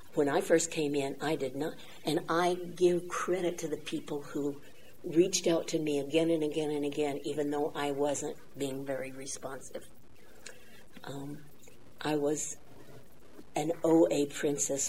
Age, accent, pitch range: 60-79, American, 140-160 Hz